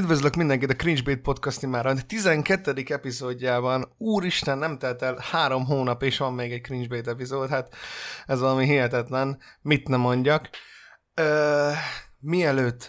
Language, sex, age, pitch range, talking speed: Hungarian, male, 20-39, 125-150 Hz, 140 wpm